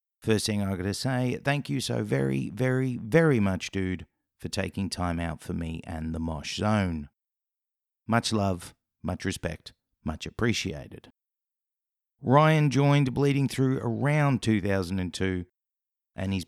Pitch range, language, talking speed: 90-120 Hz, English, 140 wpm